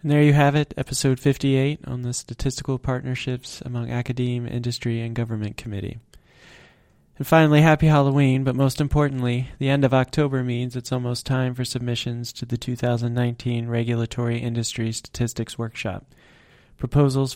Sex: male